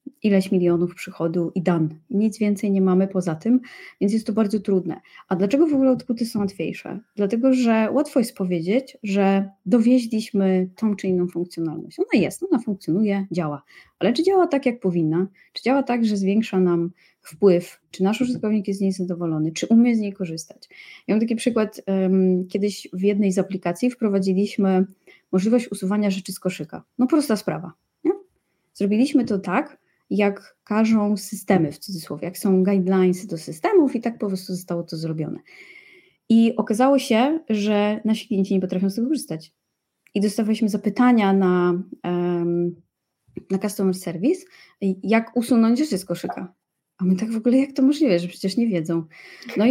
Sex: female